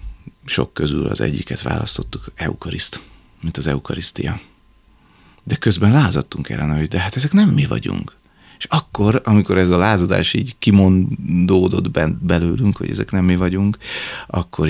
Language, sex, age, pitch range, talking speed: Hungarian, male, 30-49, 80-100 Hz, 145 wpm